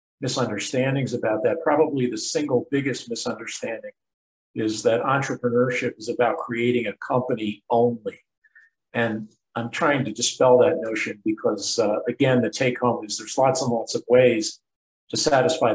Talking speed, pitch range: 150 wpm, 115-140 Hz